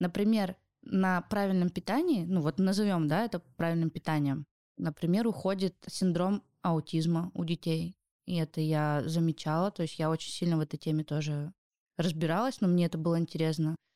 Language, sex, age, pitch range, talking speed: Russian, female, 20-39, 165-205 Hz, 155 wpm